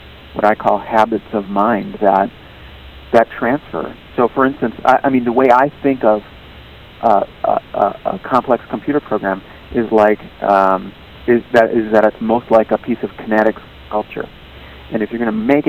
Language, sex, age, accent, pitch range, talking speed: English, male, 40-59, American, 95-120 Hz, 185 wpm